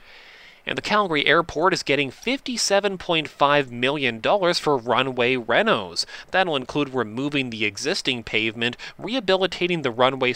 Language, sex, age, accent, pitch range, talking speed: English, male, 30-49, American, 120-175 Hz, 120 wpm